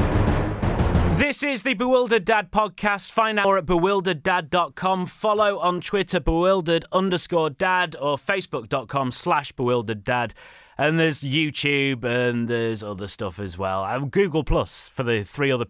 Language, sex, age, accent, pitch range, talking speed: English, male, 30-49, British, 120-185 Hz, 145 wpm